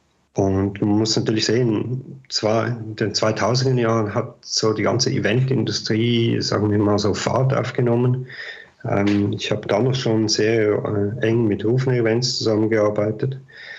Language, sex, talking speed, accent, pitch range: German, male, 150 wpm, German, 100-115 Hz